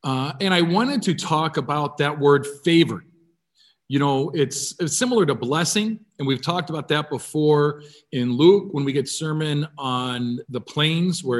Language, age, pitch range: English, 40-59, 140-180 Hz